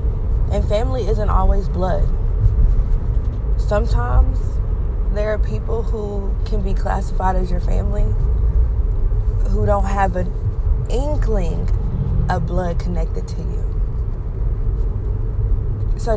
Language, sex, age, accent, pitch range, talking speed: English, female, 20-39, American, 90-110 Hz, 100 wpm